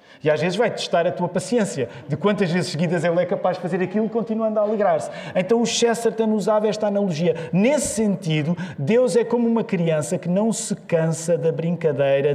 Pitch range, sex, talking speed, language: 150-225 Hz, male, 195 wpm, Portuguese